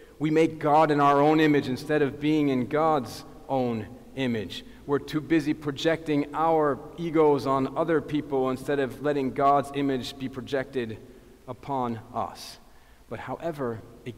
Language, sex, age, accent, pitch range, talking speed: English, male, 40-59, American, 115-140 Hz, 150 wpm